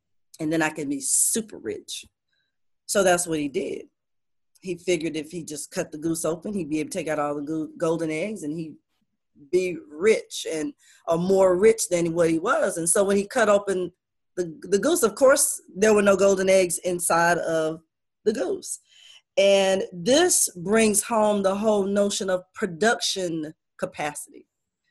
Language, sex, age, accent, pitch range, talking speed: English, female, 30-49, American, 165-230 Hz, 175 wpm